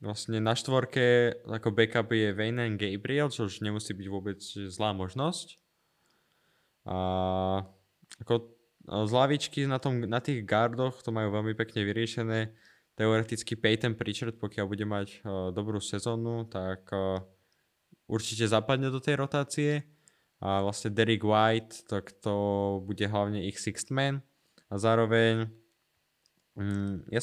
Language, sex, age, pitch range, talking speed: Slovak, male, 20-39, 105-125 Hz, 120 wpm